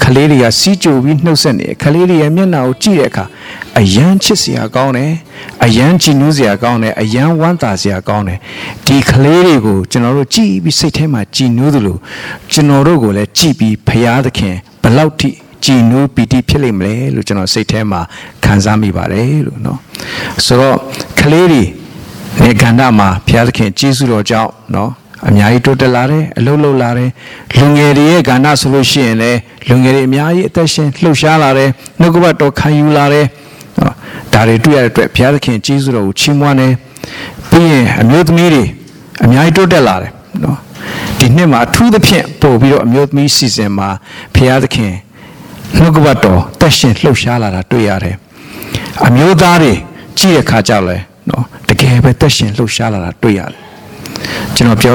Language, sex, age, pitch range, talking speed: English, male, 60-79, 110-150 Hz, 85 wpm